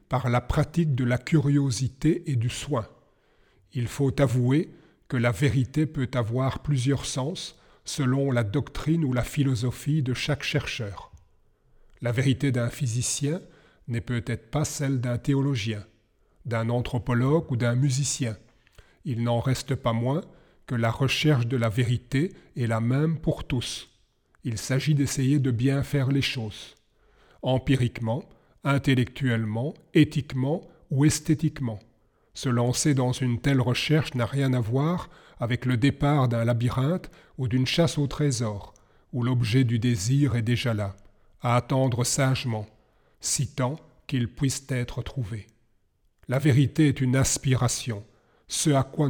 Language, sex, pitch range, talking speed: French, male, 120-145 Hz, 140 wpm